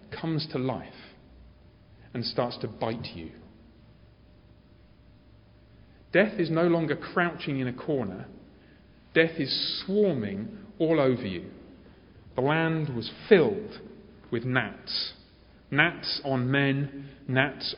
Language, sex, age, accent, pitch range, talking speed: English, male, 40-59, British, 120-170 Hz, 110 wpm